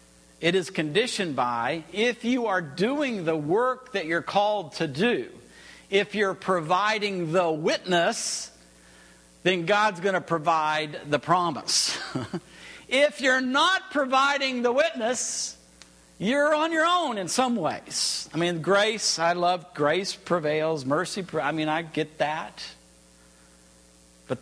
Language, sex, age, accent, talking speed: English, male, 50-69, American, 135 wpm